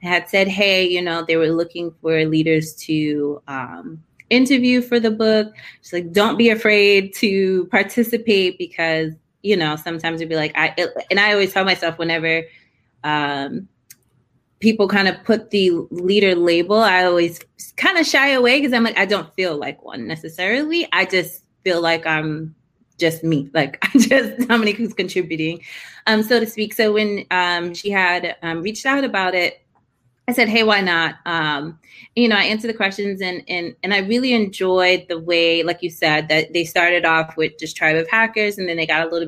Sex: female